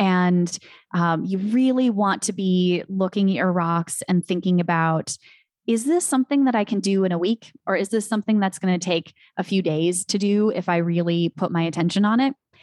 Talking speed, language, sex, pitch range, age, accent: 215 wpm, English, female, 175-210 Hz, 20-39, American